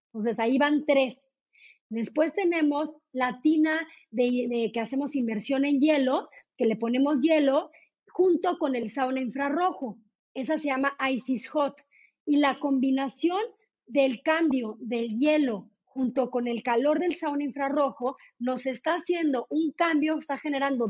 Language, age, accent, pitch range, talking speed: Spanish, 40-59, Mexican, 240-295 Hz, 140 wpm